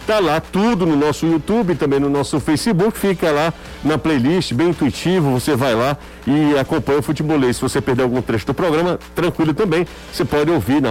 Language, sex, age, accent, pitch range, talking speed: Portuguese, male, 50-69, Brazilian, 125-175 Hz, 200 wpm